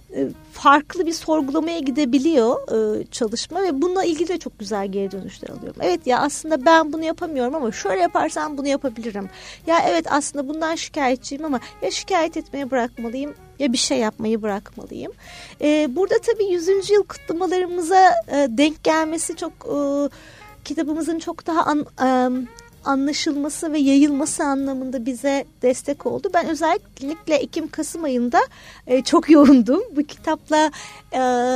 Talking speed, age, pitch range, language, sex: 130 wpm, 40-59, 250-320 Hz, Turkish, female